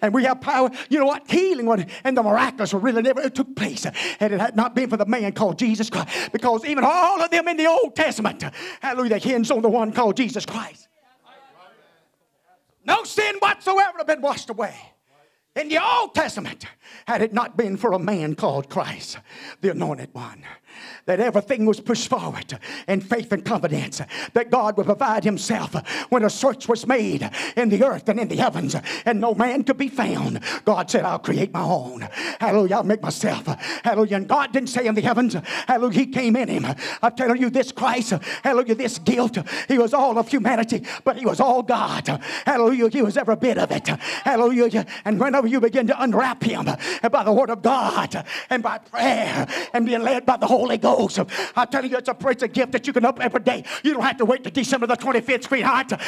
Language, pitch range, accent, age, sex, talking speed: English, 230-275 Hz, American, 40-59, male, 210 wpm